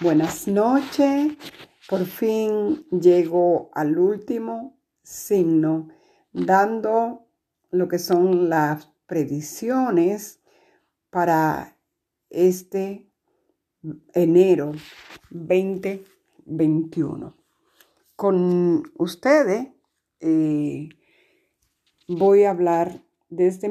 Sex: female